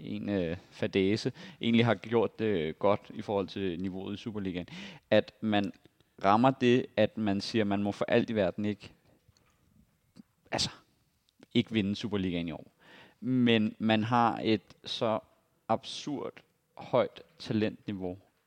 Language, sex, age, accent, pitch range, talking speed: Danish, male, 30-49, native, 100-120 Hz, 135 wpm